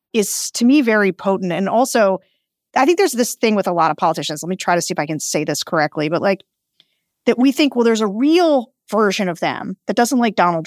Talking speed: 245 wpm